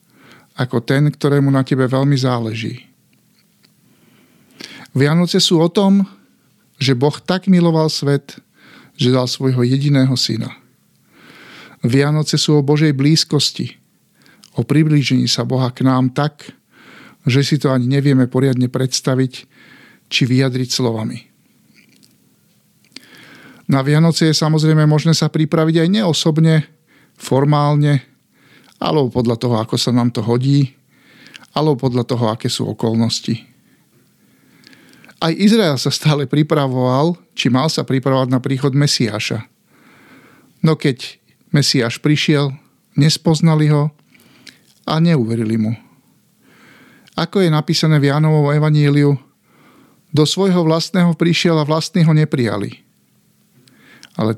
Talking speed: 115 wpm